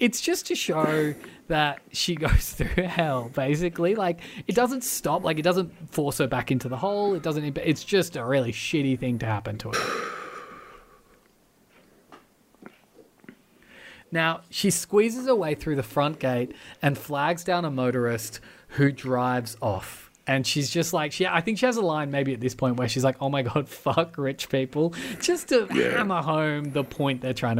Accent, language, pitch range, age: Australian, English, 130-180 Hz, 20-39